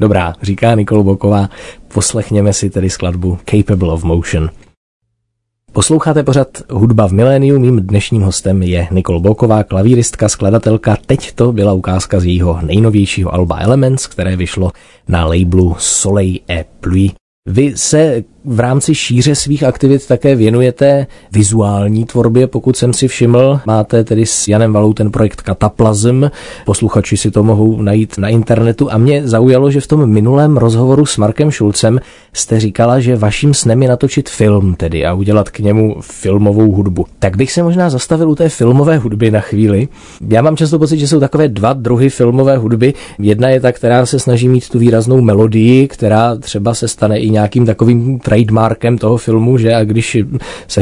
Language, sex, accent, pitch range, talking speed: Czech, male, native, 105-125 Hz, 165 wpm